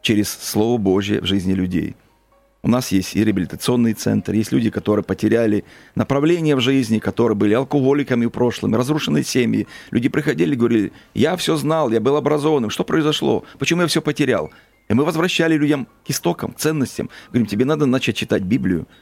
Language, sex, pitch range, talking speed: Russian, male, 105-135 Hz, 175 wpm